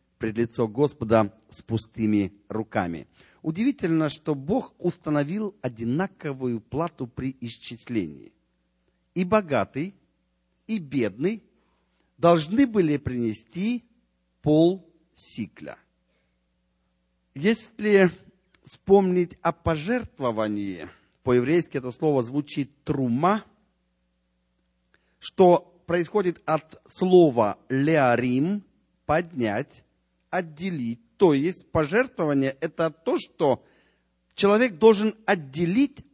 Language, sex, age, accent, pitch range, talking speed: Russian, male, 40-59, native, 115-185 Hz, 80 wpm